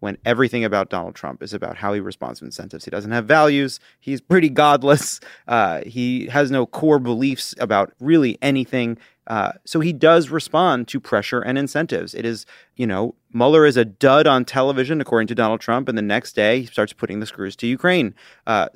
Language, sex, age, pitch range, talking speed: English, male, 30-49, 105-130 Hz, 200 wpm